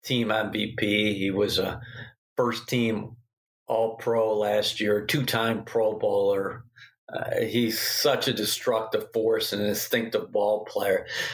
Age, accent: 40-59, American